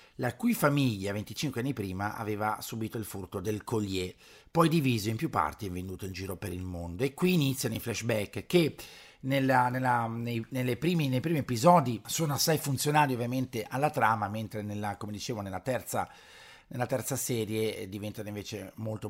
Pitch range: 100-125 Hz